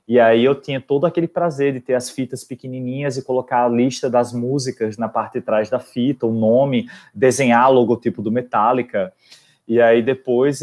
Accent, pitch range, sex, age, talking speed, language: Brazilian, 115-130 Hz, male, 20-39, 190 wpm, Portuguese